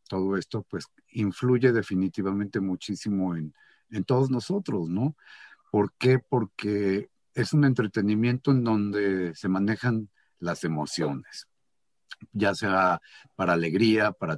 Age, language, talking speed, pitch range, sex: 50-69, English, 115 wpm, 95-130 Hz, male